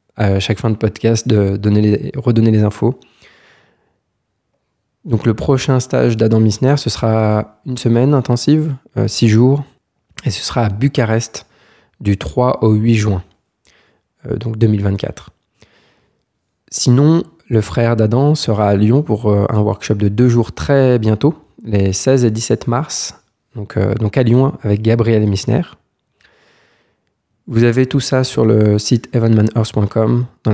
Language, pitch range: French, 105-125 Hz